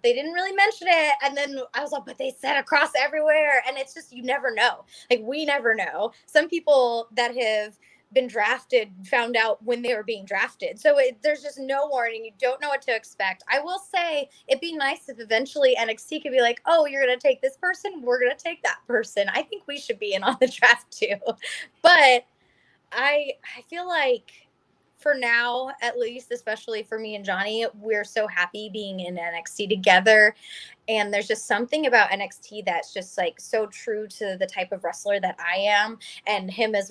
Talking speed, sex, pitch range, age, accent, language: 205 wpm, female, 210-280 Hz, 20-39, American, English